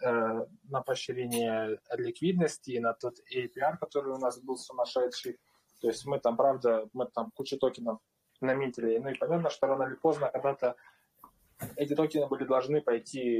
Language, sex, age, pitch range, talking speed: Russian, male, 20-39, 120-145 Hz, 150 wpm